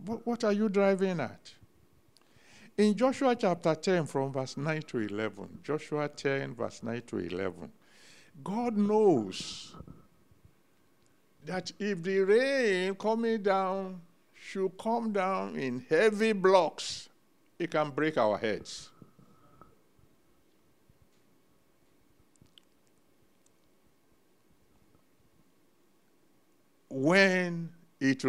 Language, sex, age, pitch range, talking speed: English, male, 60-79, 115-195 Hz, 85 wpm